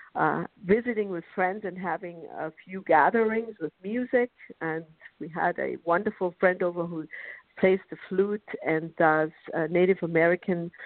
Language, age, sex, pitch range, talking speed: English, 50-69, female, 160-200 Hz, 150 wpm